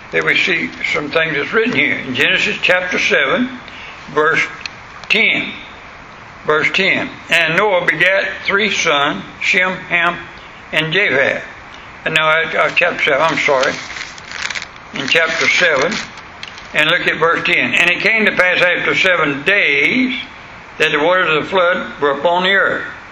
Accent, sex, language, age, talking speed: American, male, English, 60-79, 150 wpm